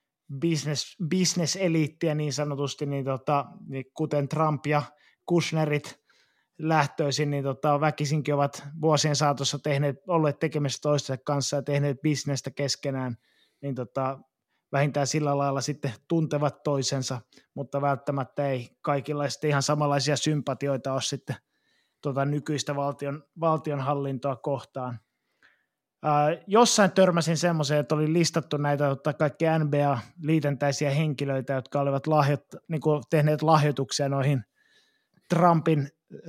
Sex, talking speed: male, 115 wpm